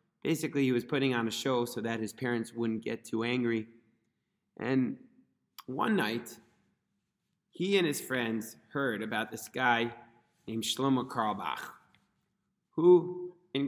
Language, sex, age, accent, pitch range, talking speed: English, male, 30-49, American, 120-160 Hz, 135 wpm